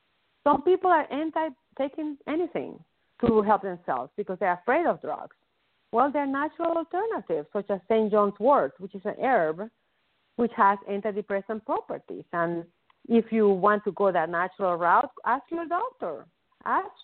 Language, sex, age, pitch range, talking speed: English, female, 50-69, 185-255 Hz, 160 wpm